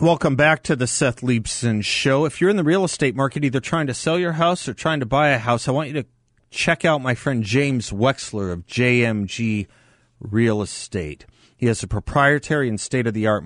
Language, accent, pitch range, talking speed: English, American, 110-140 Hz, 205 wpm